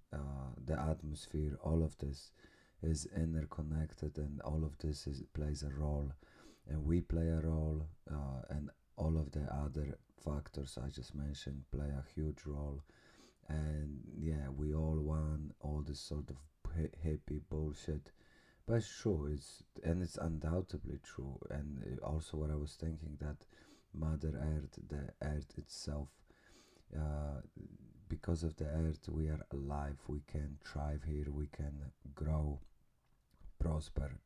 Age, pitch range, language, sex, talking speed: 30-49, 75-80 Hz, English, male, 140 wpm